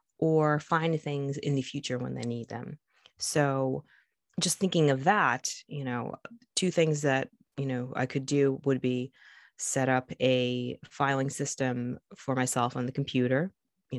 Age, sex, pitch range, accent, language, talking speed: 20-39, female, 130-155 Hz, American, English, 165 wpm